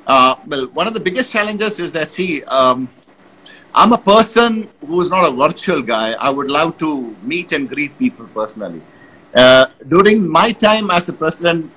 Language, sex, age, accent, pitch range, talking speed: English, male, 50-69, Indian, 145-190 Hz, 185 wpm